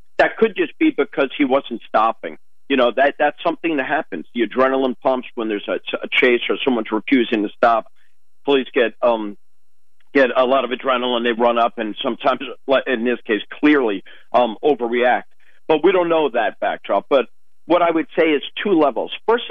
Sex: male